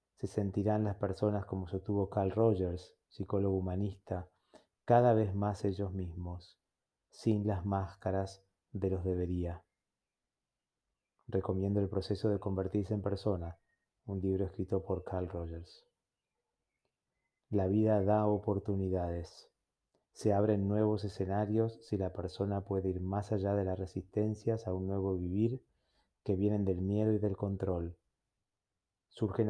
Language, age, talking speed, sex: Spanish, 30-49, 130 wpm, male